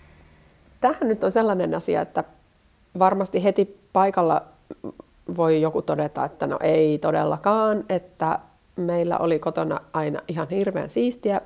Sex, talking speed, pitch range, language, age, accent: female, 125 wpm, 165-220 Hz, Finnish, 30-49, native